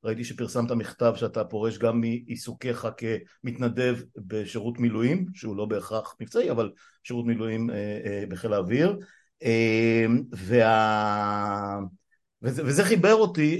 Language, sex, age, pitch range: Hebrew, male, 50-69, 110-130 Hz